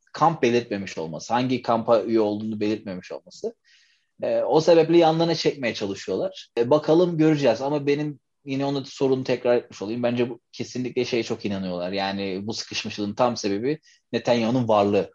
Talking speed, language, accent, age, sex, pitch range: 155 wpm, Turkish, native, 30-49, male, 115-135 Hz